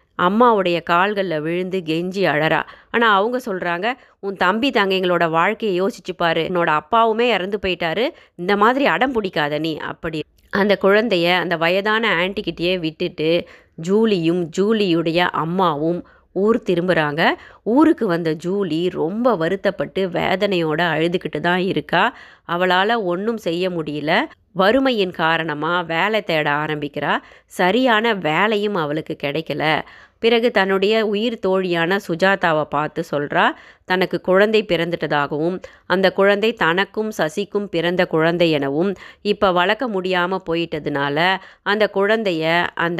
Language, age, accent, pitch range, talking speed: Tamil, 20-39, native, 165-200 Hz, 110 wpm